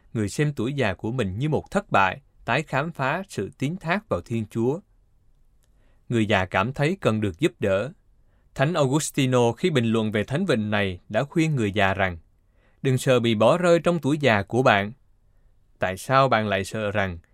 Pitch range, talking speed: 100-145 Hz, 195 wpm